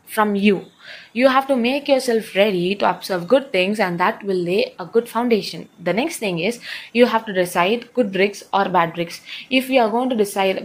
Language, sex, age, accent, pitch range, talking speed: English, female, 20-39, Indian, 185-225 Hz, 215 wpm